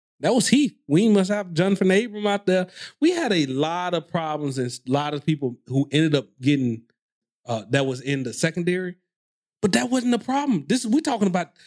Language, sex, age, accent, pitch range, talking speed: English, male, 30-49, American, 135-190 Hz, 205 wpm